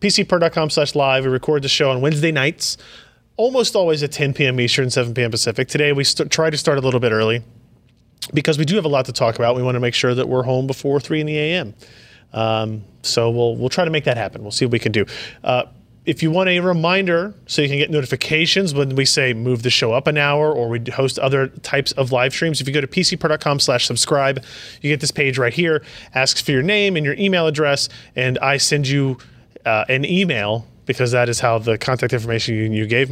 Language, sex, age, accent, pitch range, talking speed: English, male, 30-49, American, 125-150 Hz, 240 wpm